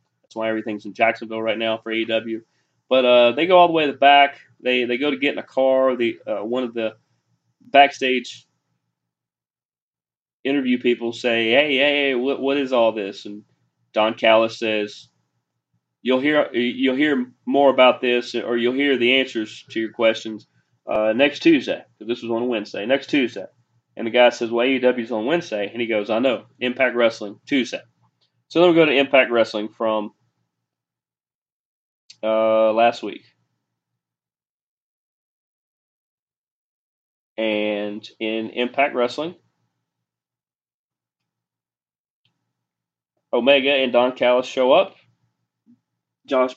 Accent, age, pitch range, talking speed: American, 30-49, 110-130 Hz, 140 wpm